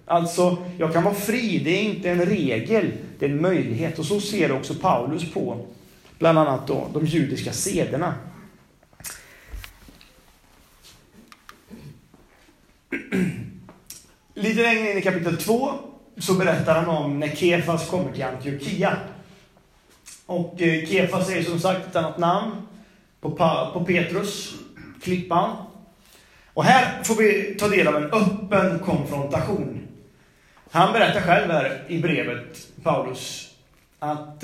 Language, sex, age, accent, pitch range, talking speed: Swedish, male, 30-49, native, 150-190 Hz, 120 wpm